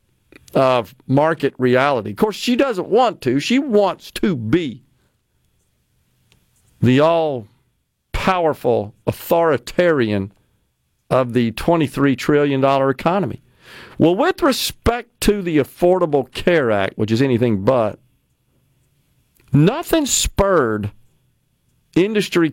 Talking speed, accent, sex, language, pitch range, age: 95 wpm, American, male, English, 125-170 Hz, 50-69